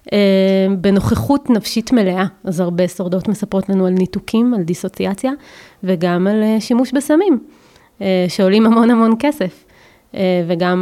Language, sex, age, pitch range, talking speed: Hebrew, female, 20-39, 180-225 Hz, 115 wpm